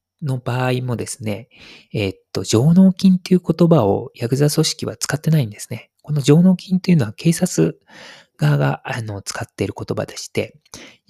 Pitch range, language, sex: 100-145 Hz, Japanese, male